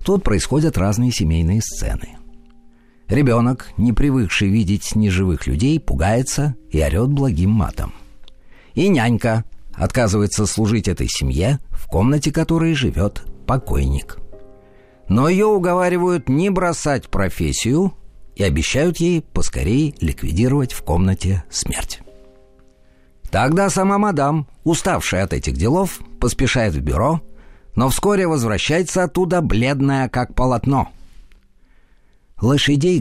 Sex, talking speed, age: male, 105 wpm, 50-69